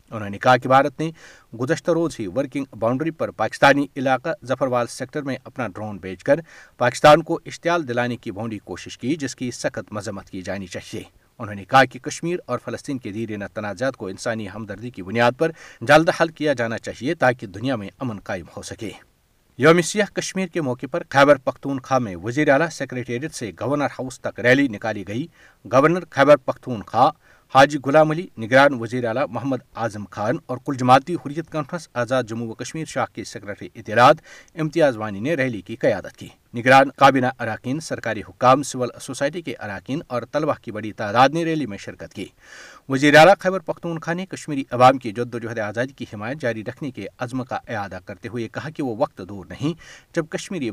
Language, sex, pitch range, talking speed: Urdu, male, 115-150 Hz, 190 wpm